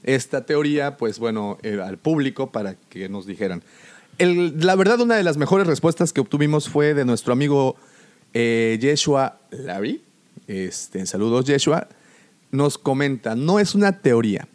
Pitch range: 115-165 Hz